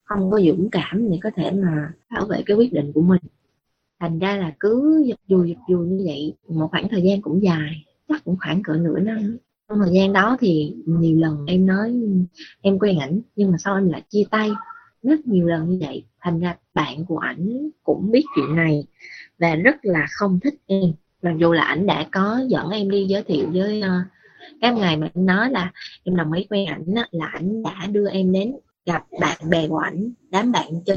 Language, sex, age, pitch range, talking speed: Vietnamese, female, 20-39, 165-215 Hz, 215 wpm